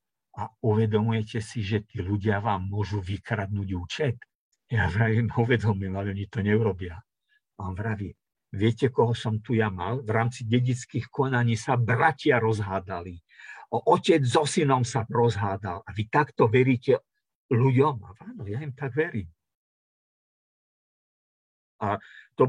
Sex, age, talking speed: male, 50-69, 135 wpm